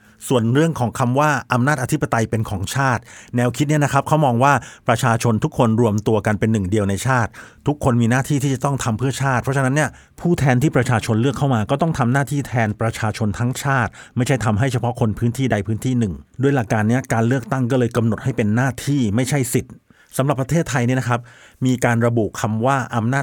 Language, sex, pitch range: Thai, male, 110-140 Hz